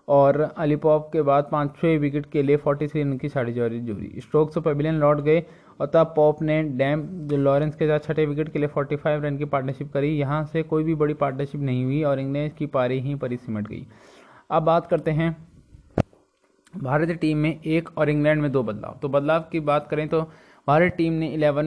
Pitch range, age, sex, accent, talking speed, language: 145-160 Hz, 20-39, male, native, 215 wpm, Hindi